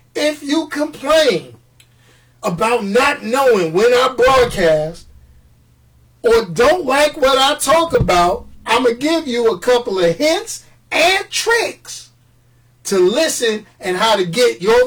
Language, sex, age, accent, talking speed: English, male, 40-59, American, 135 wpm